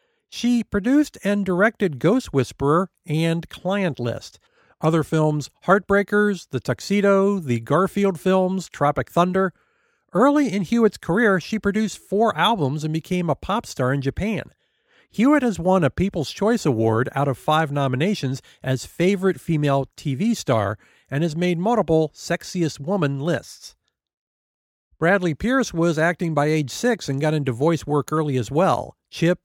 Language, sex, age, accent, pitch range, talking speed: English, male, 50-69, American, 140-195 Hz, 150 wpm